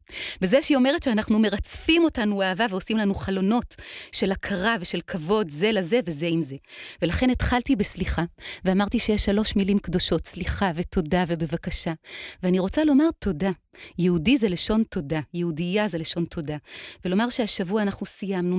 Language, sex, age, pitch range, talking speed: Hebrew, female, 30-49, 190-260 Hz, 150 wpm